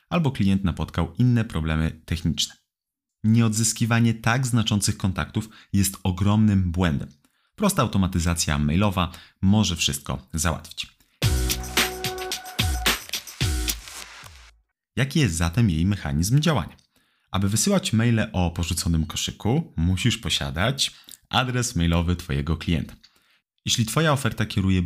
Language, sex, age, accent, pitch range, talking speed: Polish, male, 30-49, native, 85-115 Hz, 100 wpm